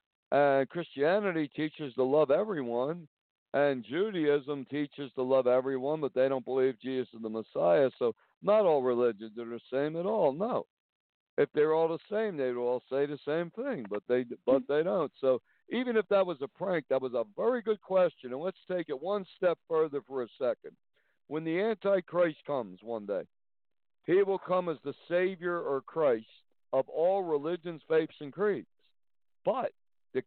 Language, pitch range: English, 130-180 Hz